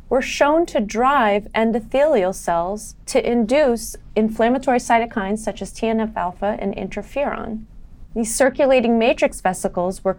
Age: 30-49